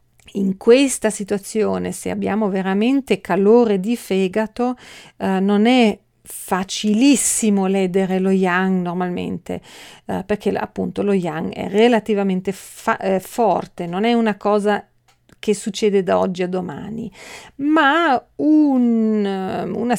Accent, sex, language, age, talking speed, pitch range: native, female, Italian, 40-59, 115 wpm, 190-220 Hz